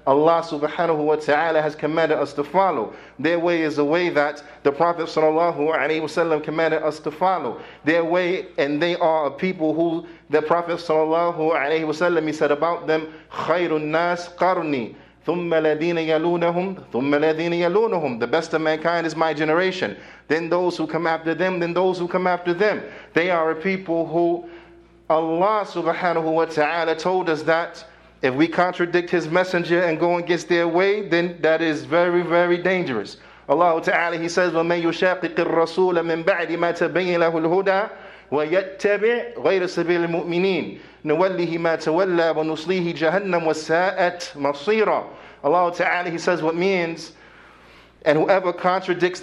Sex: male